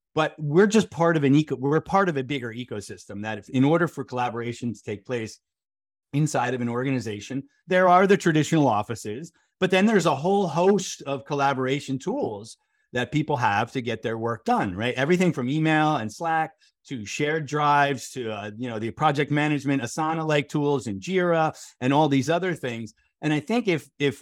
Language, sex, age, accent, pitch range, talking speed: English, male, 30-49, American, 125-170 Hz, 195 wpm